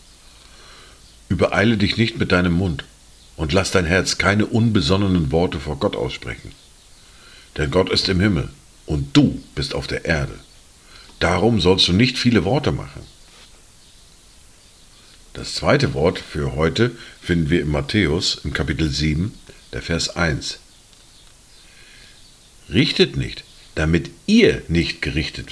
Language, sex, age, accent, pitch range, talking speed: German, male, 50-69, German, 80-100 Hz, 130 wpm